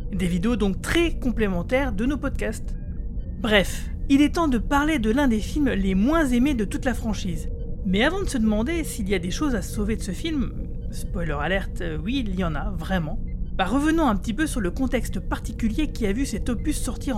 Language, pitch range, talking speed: French, 205-275 Hz, 220 wpm